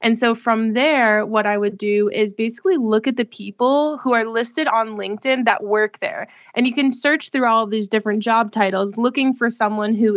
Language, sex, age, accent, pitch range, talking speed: English, female, 20-39, American, 205-235 Hz, 210 wpm